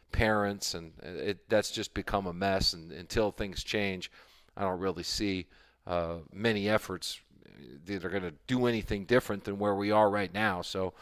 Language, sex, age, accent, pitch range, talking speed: English, male, 40-59, American, 100-120 Hz, 175 wpm